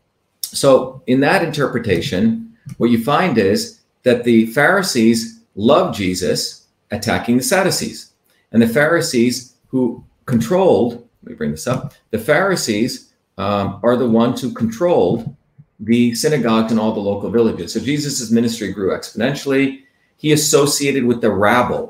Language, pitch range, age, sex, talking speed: English, 105-130 Hz, 40-59, male, 140 wpm